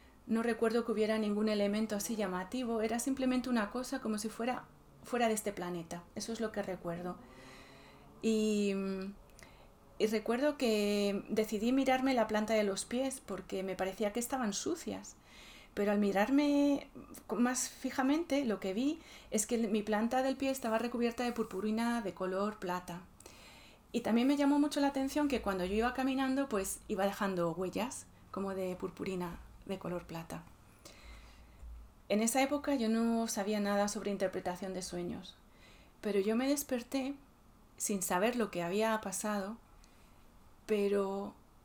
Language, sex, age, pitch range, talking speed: Spanish, female, 30-49, 195-250 Hz, 155 wpm